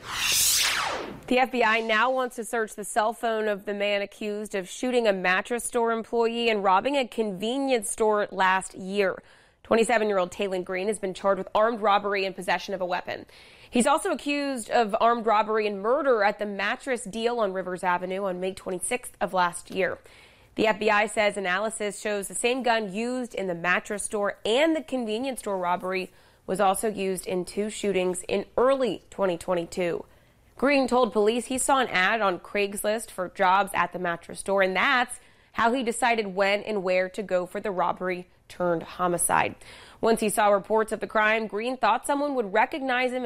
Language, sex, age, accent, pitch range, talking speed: English, female, 20-39, American, 190-230 Hz, 180 wpm